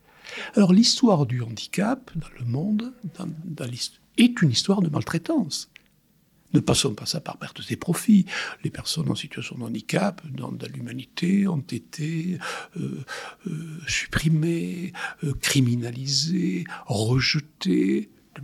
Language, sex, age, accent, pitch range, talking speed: French, male, 60-79, French, 135-190 Hz, 130 wpm